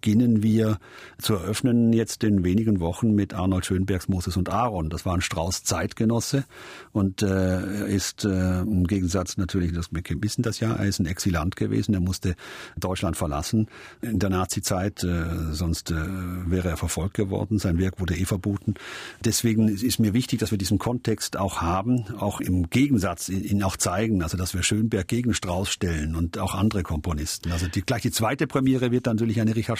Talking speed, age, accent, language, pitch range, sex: 185 wpm, 50-69, German, German, 90-110 Hz, male